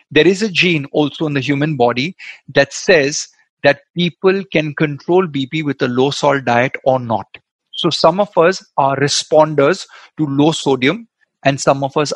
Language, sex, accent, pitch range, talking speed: Hindi, male, native, 135-170 Hz, 180 wpm